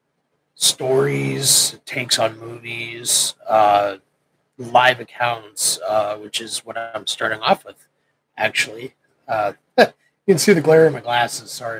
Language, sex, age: English, male, 30-49